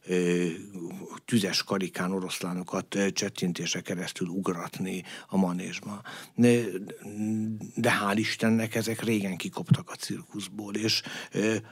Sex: male